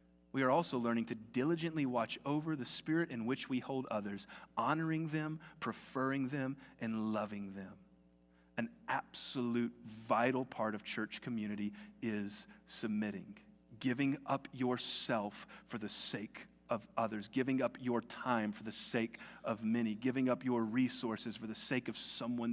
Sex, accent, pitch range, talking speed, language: male, American, 120-190 Hz, 150 wpm, English